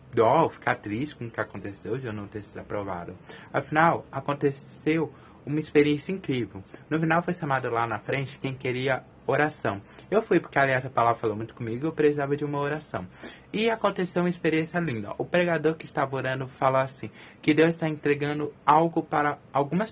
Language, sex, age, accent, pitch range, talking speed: Portuguese, male, 20-39, Brazilian, 125-160 Hz, 185 wpm